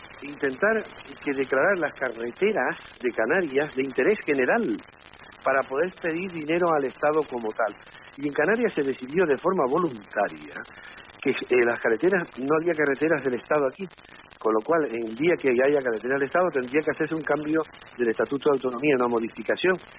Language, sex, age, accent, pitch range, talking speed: Spanish, male, 60-79, Argentinian, 130-165 Hz, 175 wpm